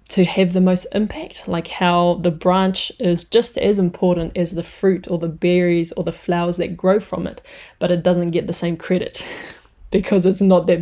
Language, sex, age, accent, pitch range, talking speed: English, female, 20-39, Australian, 170-190 Hz, 205 wpm